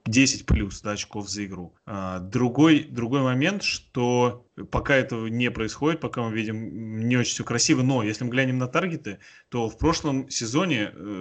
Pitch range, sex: 105-125 Hz, male